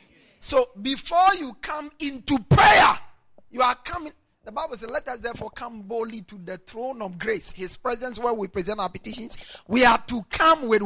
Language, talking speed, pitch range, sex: English, 190 wpm, 200-285 Hz, male